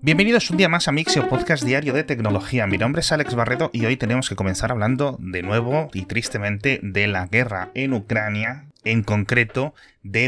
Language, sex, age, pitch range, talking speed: Spanish, male, 30-49, 100-125 Hz, 195 wpm